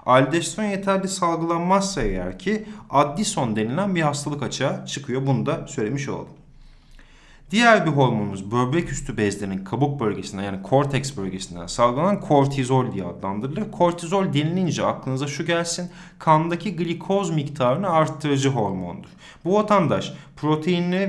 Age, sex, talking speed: 30-49, male, 120 wpm